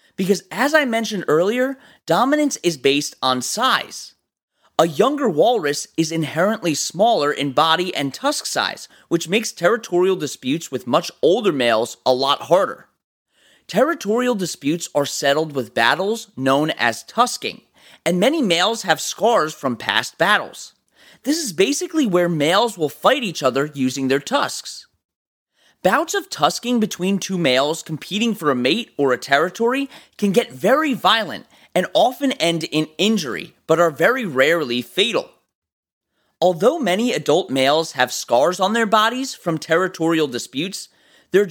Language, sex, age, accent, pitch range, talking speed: English, male, 30-49, American, 150-240 Hz, 145 wpm